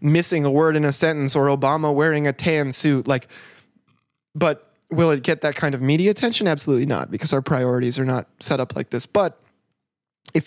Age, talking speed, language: 20-39, 200 wpm, English